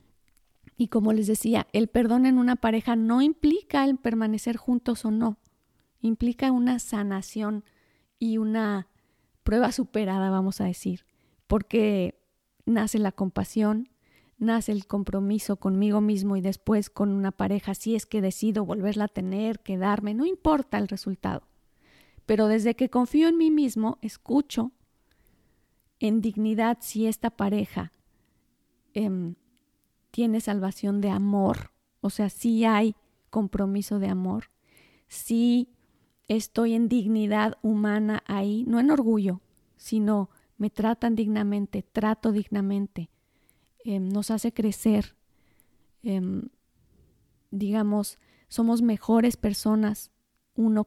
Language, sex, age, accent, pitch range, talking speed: Spanish, female, 40-59, Mexican, 200-230 Hz, 120 wpm